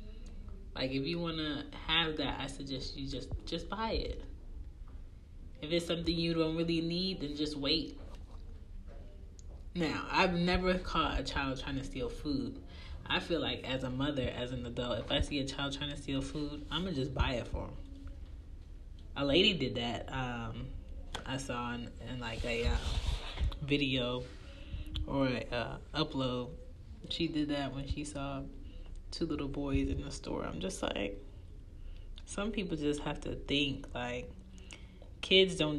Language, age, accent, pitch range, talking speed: English, 20-39, American, 85-145 Hz, 170 wpm